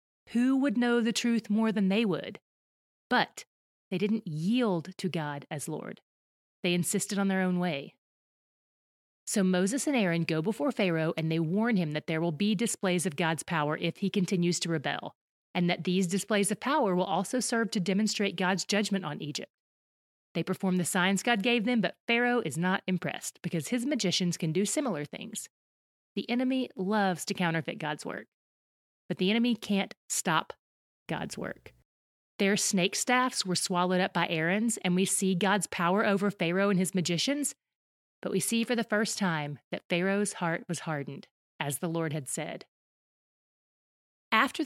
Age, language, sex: 30-49, English, female